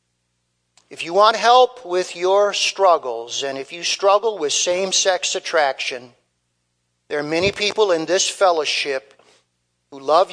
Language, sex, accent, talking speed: English, male, American, 140 wpm